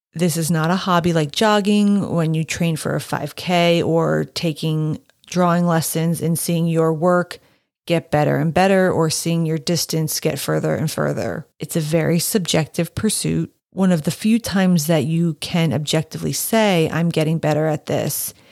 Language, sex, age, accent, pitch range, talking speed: English, female, 30-49, American, 155-175 Hz, 170 wpm